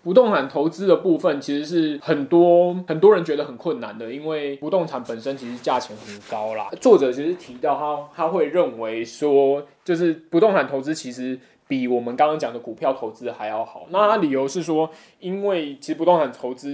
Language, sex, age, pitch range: Chinese, male, 20-39, 125-175 Hz